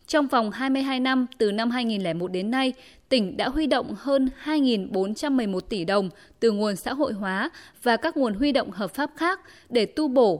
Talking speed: 190 wpm